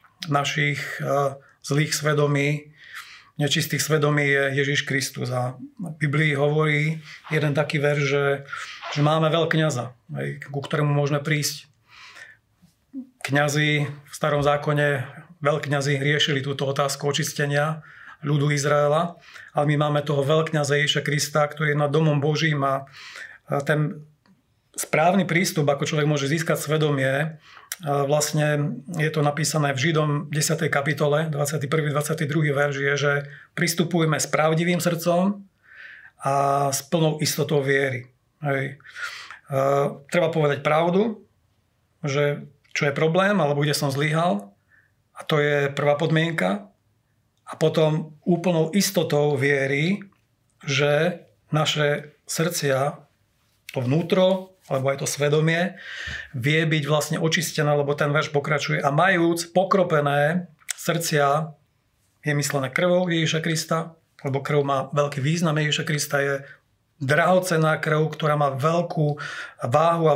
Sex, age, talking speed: male, 40-59, 120 wpm